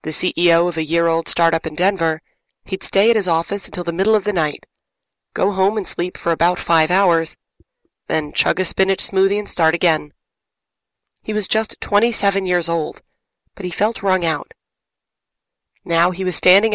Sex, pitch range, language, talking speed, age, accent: female, 165-200 Hz, English, 180 wpm, 30-49, American